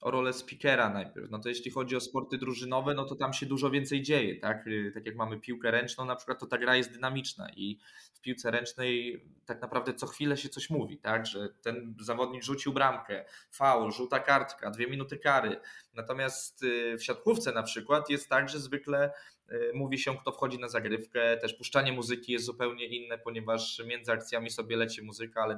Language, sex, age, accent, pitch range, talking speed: Polish, male, 20-39, native, 115-135 Hz, 190 wpm